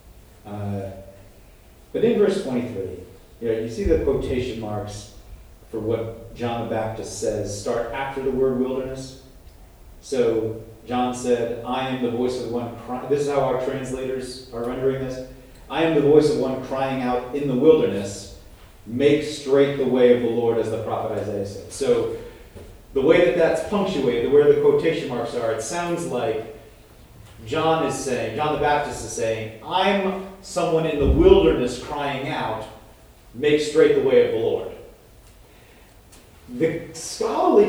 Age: 40-59